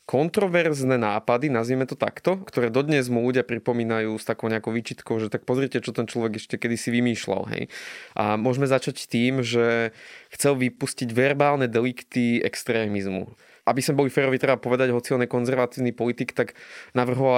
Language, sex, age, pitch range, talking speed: Slovak, male, 20-39, 115-135 Hz, 160 wpm